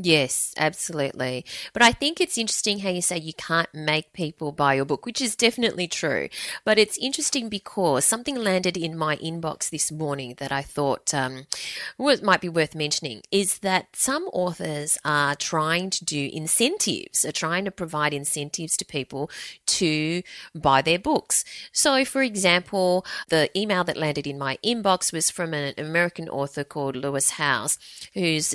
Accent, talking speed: Australian, 165 wpm